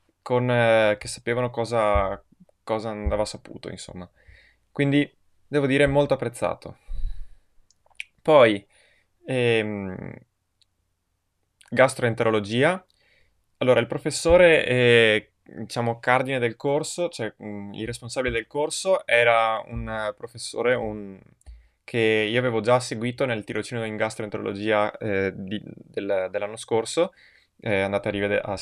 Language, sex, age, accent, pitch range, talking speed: Italian, male, 20-39, native, 100-125 Hz, 115 wpm